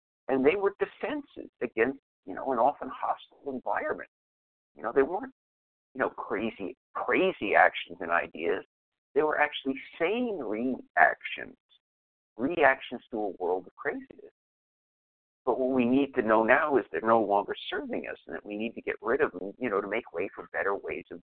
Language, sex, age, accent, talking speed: English, male, 50-69, American, 180 wpm